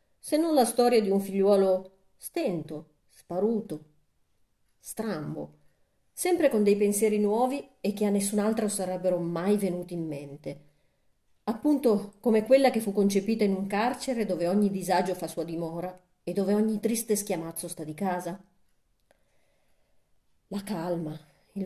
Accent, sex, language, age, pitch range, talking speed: native, female, Italian, 40-59, 170-215 Hz, 140 wpm